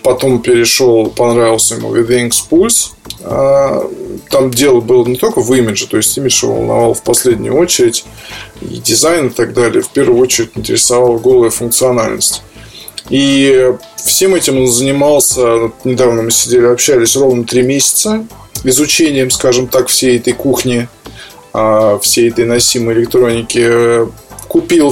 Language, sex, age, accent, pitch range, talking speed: Russian, male, 20-39, native, 120-155 Hz, 130 wpm